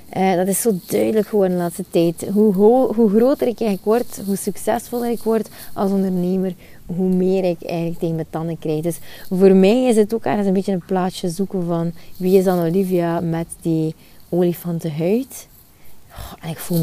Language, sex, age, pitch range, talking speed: Dutch, female, 20-39, 175-205 Hz, 195 wpm